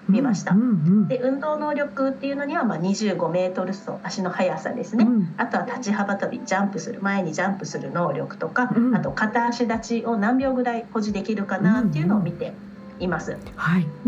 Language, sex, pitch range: Japanese, female, 195-250 Hz